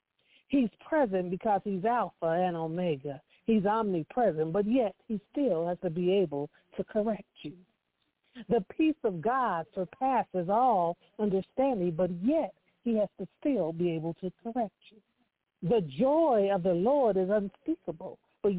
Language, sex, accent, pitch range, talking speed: English, female, American, 190-255 Hz, 150 wpm